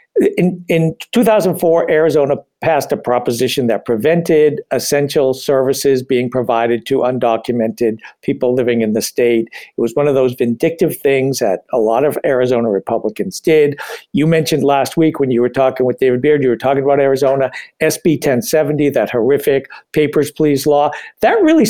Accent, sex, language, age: American, male, English, 60-79